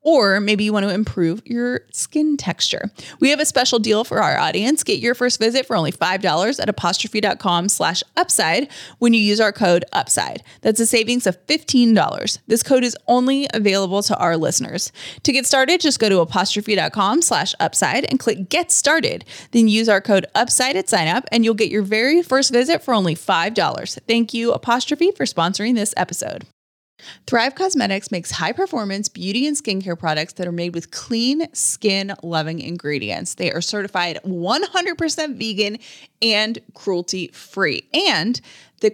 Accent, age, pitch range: American, 20-39, 175-250 Hz